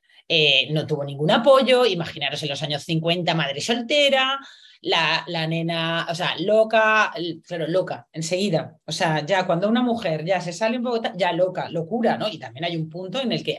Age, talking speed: 30-49, 200 wpm